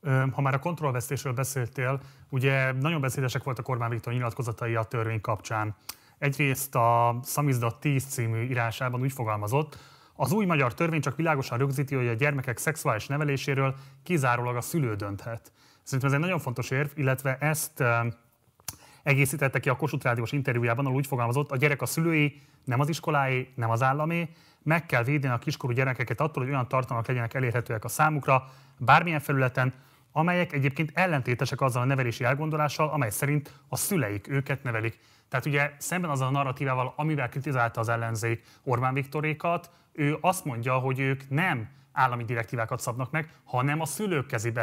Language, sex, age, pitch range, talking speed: Hungarian, male, 30-49, 120-145 Hz, 160 wpm